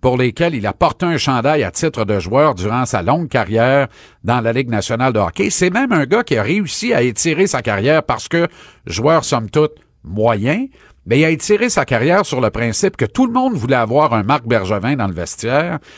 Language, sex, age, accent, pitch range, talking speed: French, male, 50-69, Canadian, 110-155 Hz, 220 wpm